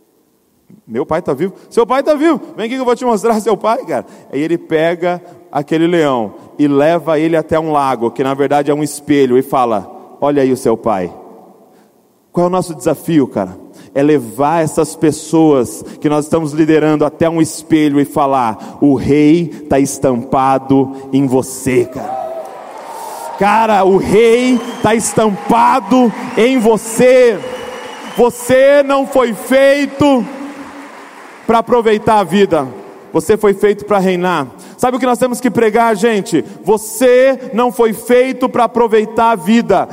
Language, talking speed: Portuguese, 155 wpm